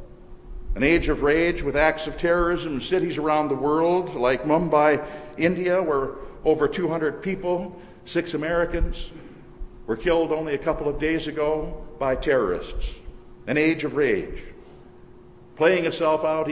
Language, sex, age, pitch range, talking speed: English, male, 60-79, 135-165 Hz, 140 wpm